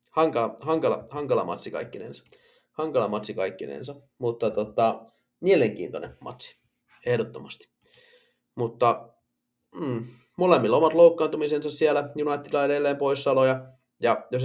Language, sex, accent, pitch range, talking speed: Finnish, male, native, 115-160 Hz, 95 wpm